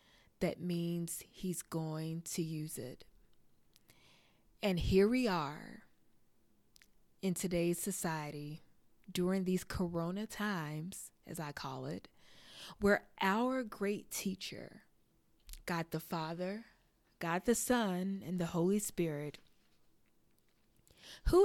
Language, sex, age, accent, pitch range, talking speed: English, female, 20-39, American, 170-230 Hz, 105 wpm